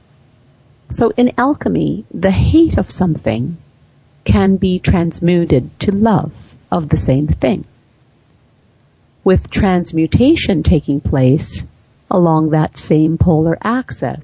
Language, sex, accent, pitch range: English, female, American, 150-195 Hz